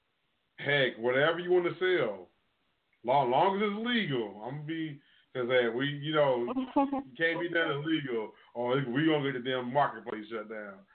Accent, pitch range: American, 120-145 Hz